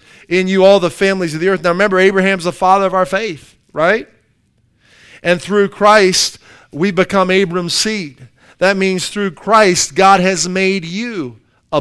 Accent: American